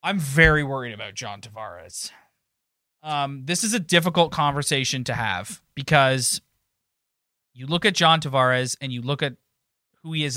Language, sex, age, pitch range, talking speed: English, male, 20-39, 125-155 Hz, 155 wpm